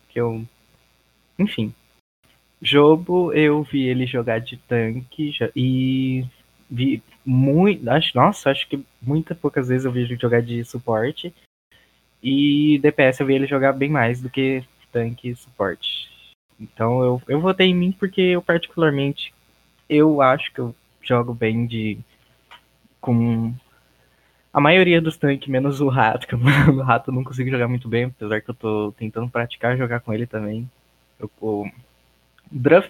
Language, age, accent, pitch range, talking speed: Portuguese, 20-39, Brazilian, 115-145 Hz, 155 wpm